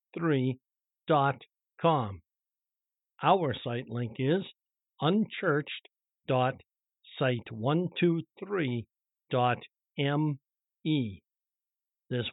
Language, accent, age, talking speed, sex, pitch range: English, American, 50-69, 70 wpm, male, 125-155 Hz